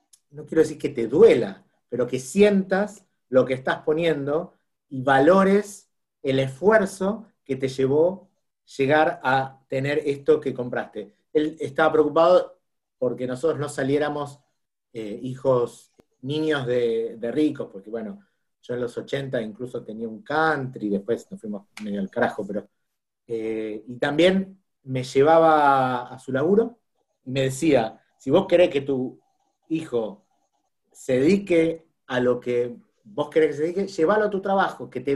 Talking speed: 155 wpm